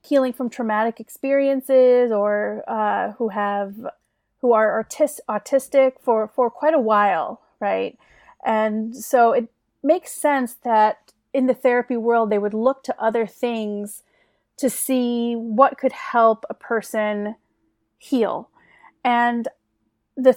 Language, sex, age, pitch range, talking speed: English, female, 30-49, 215-265 Hz, 125 wpm